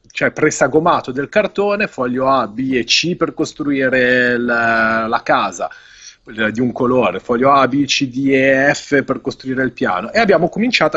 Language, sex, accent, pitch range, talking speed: Italian, male, native, 120-160 Hz, 175 wpm